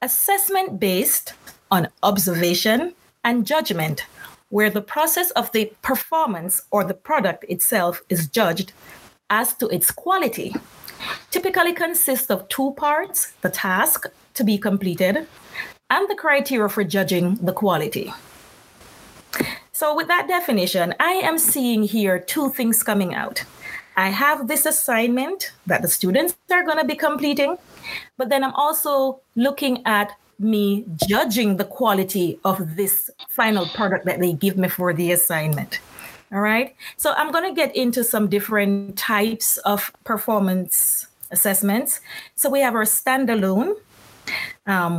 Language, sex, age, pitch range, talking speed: English, female, 30-49, 190-280 Hz, 135 wpm